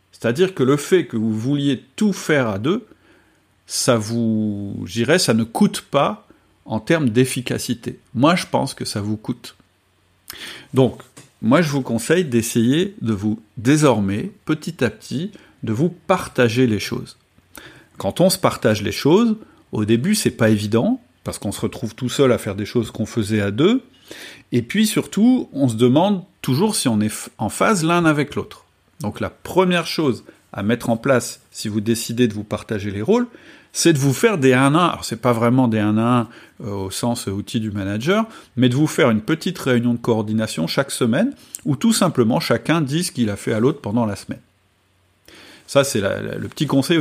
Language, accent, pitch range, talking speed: French, French, 110-155 Hz, 190 wpm